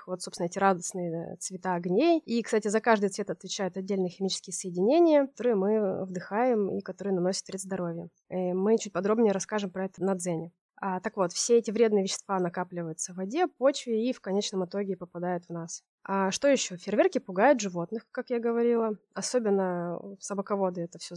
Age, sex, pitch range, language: 20-39, female, 190-235 Hz, Russian